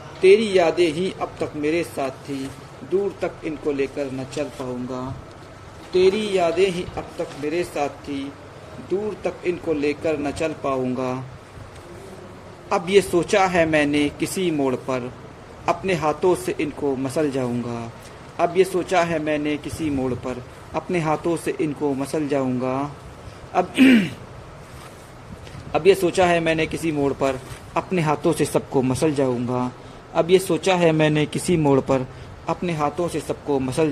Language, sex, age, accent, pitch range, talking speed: Hindi, male, 50-69, native, 135-175 Hz, 155 wpm